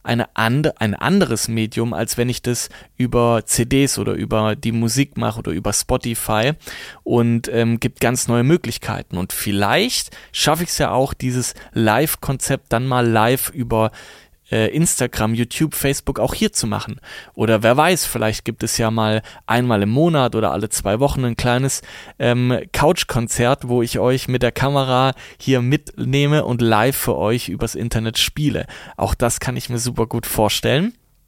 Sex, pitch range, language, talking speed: male, 110-130 Hz, German, 170 wpm